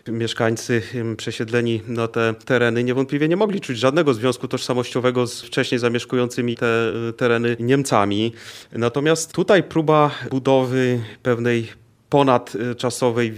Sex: male